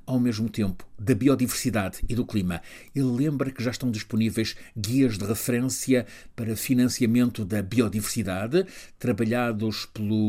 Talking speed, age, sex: 135 wpm, 50-69, male